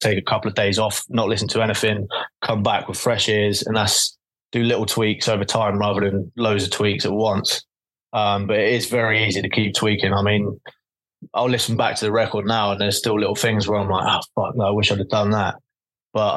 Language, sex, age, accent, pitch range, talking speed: English, male, 20-39, British, 100-115 Hz, 240 wpm